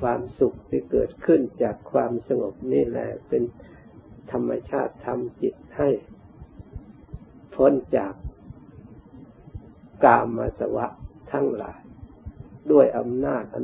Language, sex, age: Thai, male, 60-79